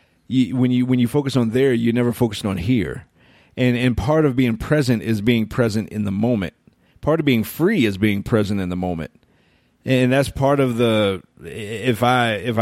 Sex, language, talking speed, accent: male, English, 205 wpm, American